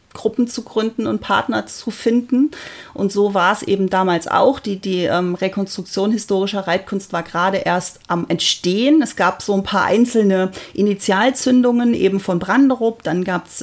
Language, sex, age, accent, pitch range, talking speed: German, female, 30-49, German, 180-225 Hz, 165 wpm